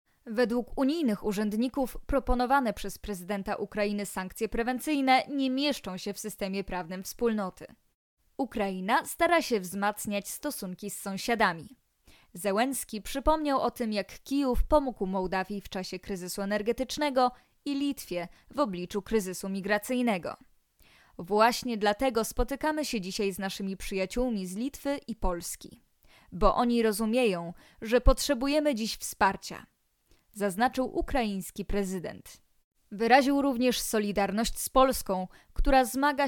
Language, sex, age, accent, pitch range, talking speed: Polish, female, 20-39, native, 200-255 Hz, 115 wpm